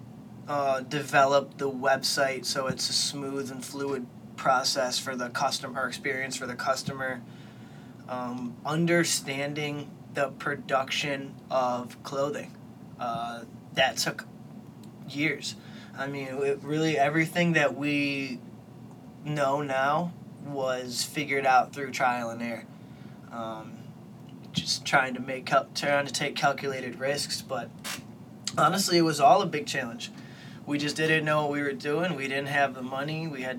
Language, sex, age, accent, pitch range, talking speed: English, male, 20-39, American, 125-145 Hz, 140 wpm